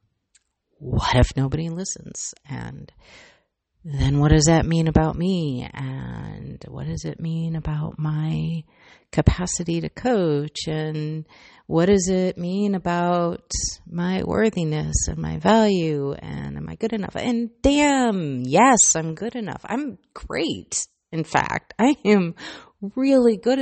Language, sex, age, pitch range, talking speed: English, female, 30-49, 155-205 Hz, 130 wpm